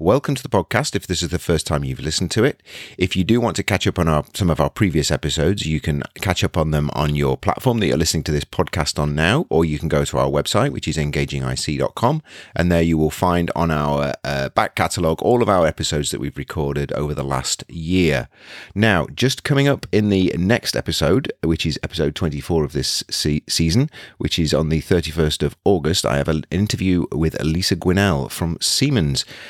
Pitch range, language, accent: 75-90 Hz, English, British